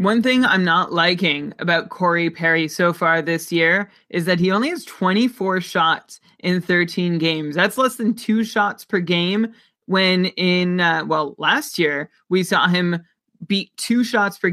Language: English